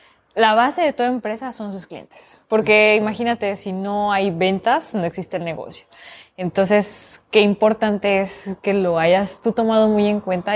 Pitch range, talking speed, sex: 180-220 Hz, 170 wpm, female